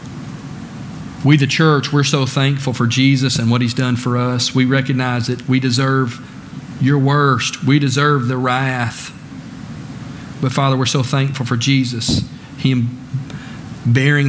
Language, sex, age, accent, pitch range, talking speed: English, male, 40-59, American, 120-135 Hz, 145 wpm